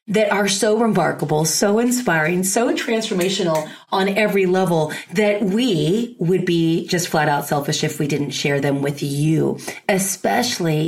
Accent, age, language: American, 30-49, English